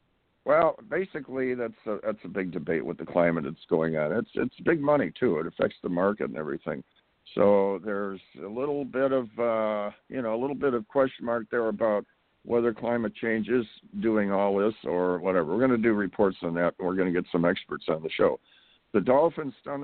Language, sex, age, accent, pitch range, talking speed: English, male, 60-79, American, 100-135 Hz, 215 wpm